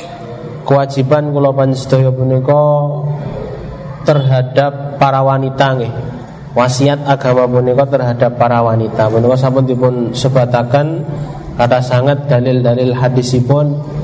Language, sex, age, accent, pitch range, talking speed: Indonesian, male, 20-39, native, 130-155 Hz, 85 wpm